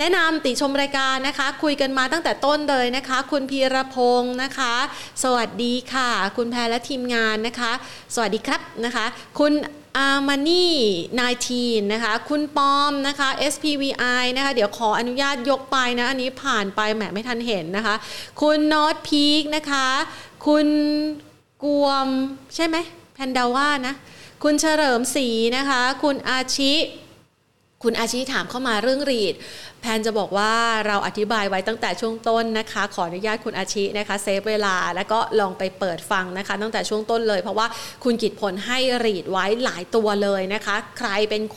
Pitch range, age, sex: 210-270 Hz, 30-49, female